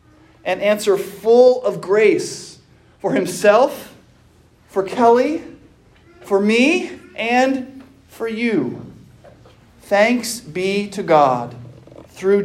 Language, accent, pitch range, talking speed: English, American, 145-225 Hz, 90 wpm